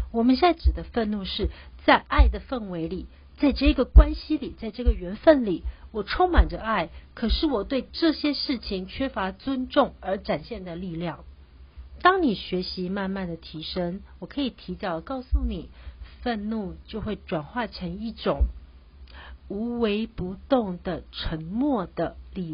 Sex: female